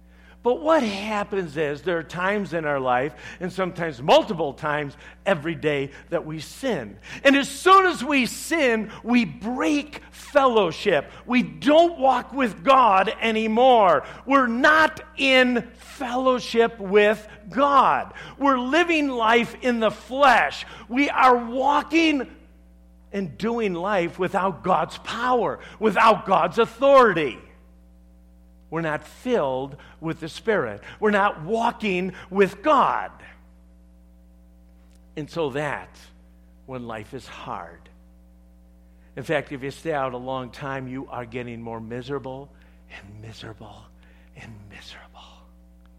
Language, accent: English, American